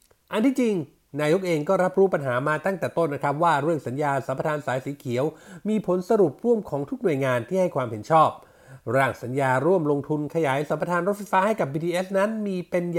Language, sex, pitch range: Thai, male, 140-190 Hz